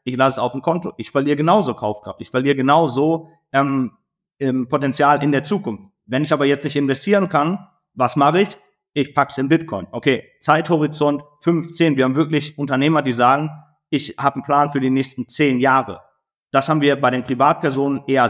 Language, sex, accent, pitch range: German, male, German, 125-155 Hz